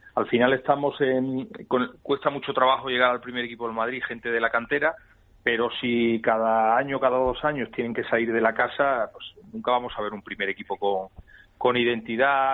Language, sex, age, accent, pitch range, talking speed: Spanish, male, 40-59, Spanish, 115-135 Hz, 200 wpm